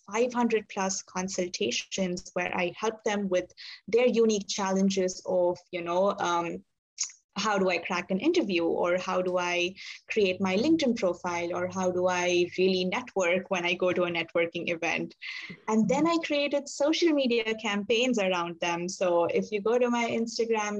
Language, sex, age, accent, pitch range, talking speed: English, female, 20-39, Indian, 180-215 Hz, 165 wpm